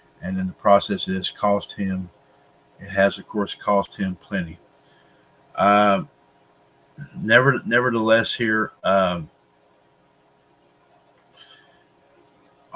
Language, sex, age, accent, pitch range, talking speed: English, male, 50-69, American, 100-120 Hz, 90 wpm